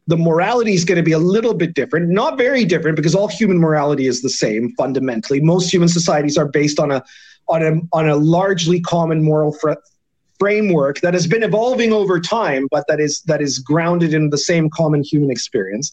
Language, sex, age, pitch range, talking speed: English, male, 40-59, 155-185 Hz, 205 wpm